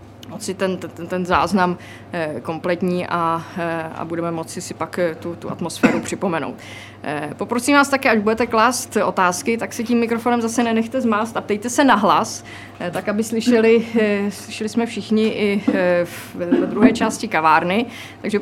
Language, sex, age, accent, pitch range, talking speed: Czech, female, 20-39, native, 185-230 Hz, 155 wpm